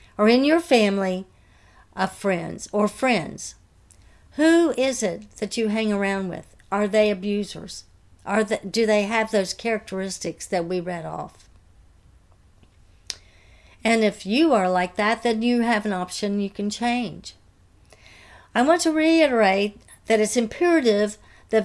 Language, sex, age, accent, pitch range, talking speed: English, female, 60-79, American, 185-240 Hz, 140 wpm